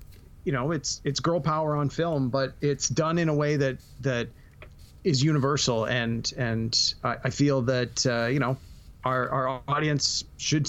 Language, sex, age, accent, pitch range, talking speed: English, male, 30-49, American, 125-155 Hz, 175 wpm